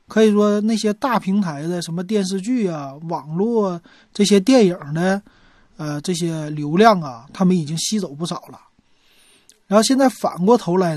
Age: 30-49